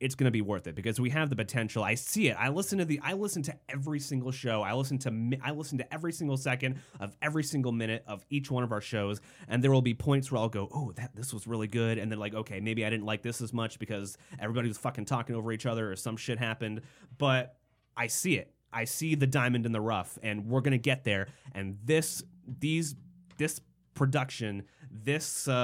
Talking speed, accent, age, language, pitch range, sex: 240 wpm, American, 30-49, English, 110-135 Hz, male